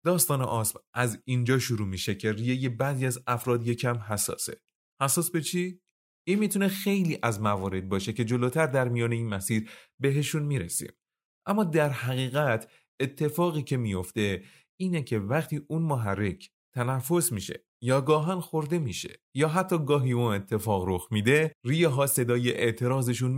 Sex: male